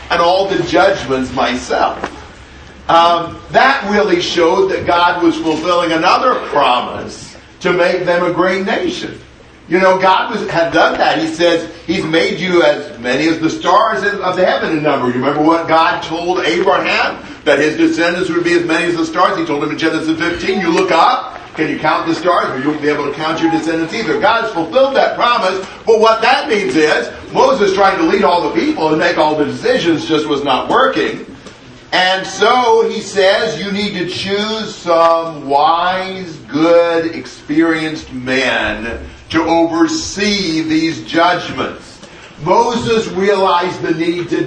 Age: 50-69